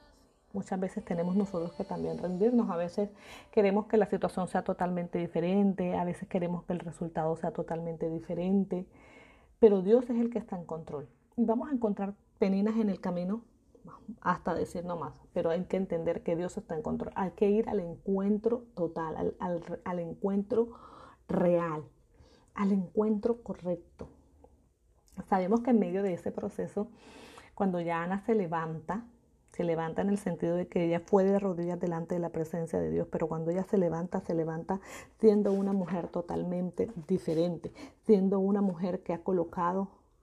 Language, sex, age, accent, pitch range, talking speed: Spanish, female, 30-49, American, 175-215 Hz, 170 wpm